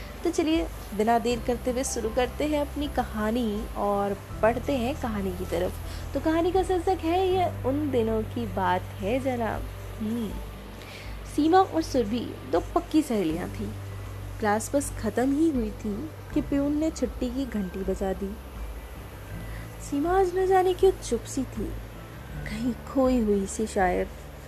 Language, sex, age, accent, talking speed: Hindi, female, 20-39, native, 150 wpm